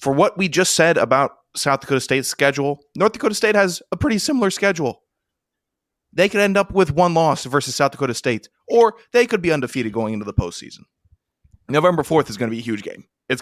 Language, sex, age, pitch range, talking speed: English, male, 20-39, 110-140 Hz, 215 wpm